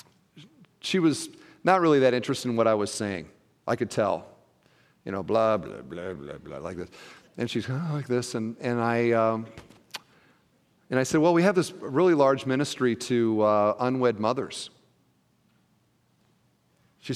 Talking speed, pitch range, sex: 150 wpm, 110-150 Hz, male